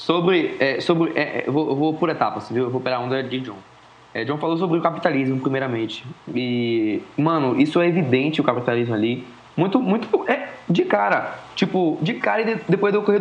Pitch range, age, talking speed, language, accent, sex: 145-195 Hz, 20-39, 215 wpm, Portuguese, Brazilian, male